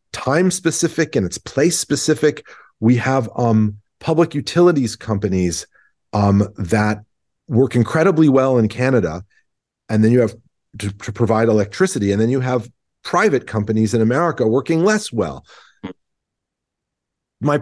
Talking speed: 135 wpm